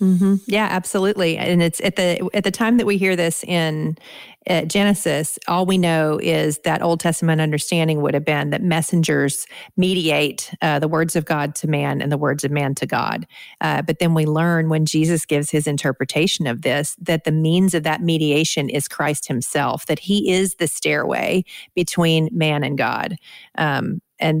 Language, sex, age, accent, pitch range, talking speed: English, female, 40-59, American, 150-175 Hz, 190 wpm